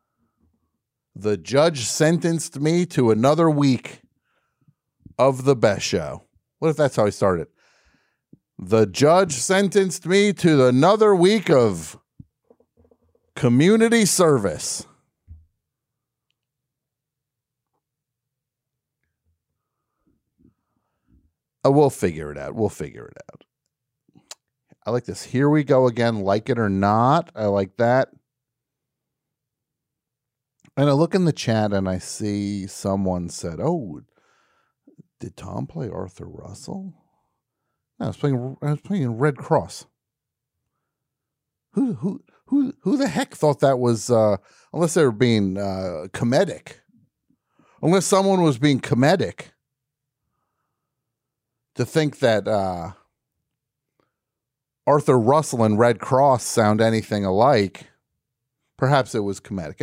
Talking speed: 115 wpm